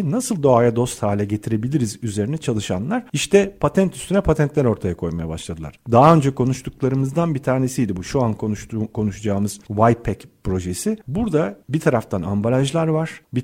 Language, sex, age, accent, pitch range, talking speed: Turkish, male, 40-59, native, 105-140 Hz, 140 wpm